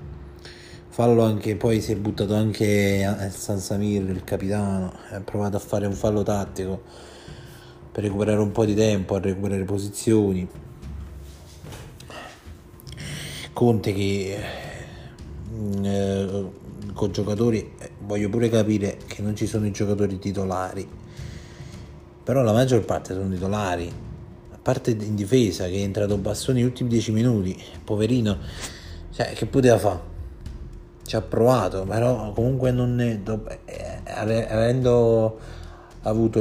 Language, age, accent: Italian, 30-49, native